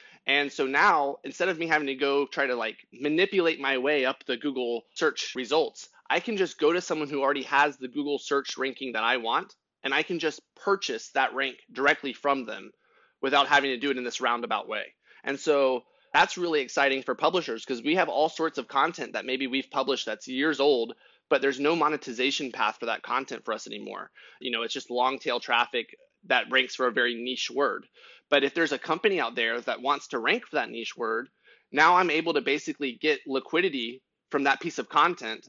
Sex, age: male, 20-39